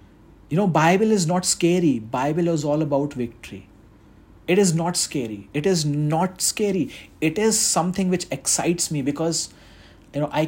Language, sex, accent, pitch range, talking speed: Hindi, male, native, 135-175 Hz, 165 wpm